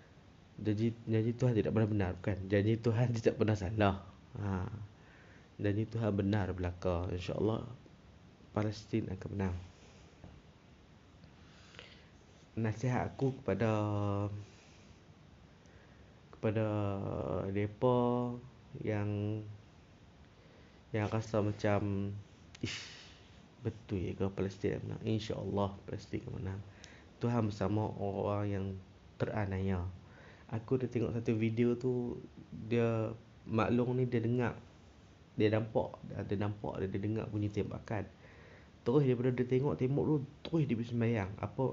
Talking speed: 105 wpm